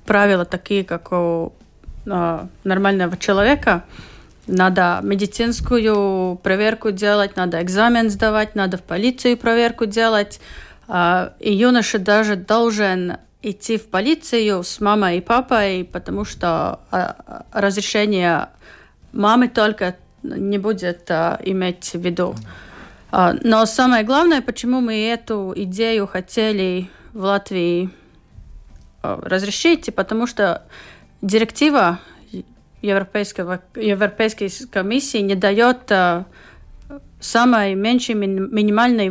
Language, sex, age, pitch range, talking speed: Russian, female, 30-49, 185-230 Hz, 95 wpm